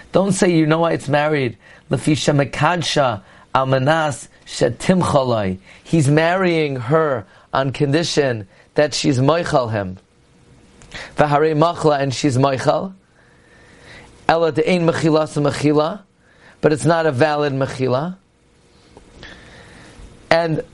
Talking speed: 110 wpm